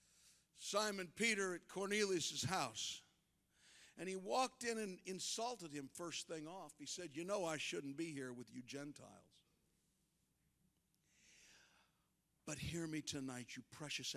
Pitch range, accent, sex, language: 155-230 Hz, American, male, English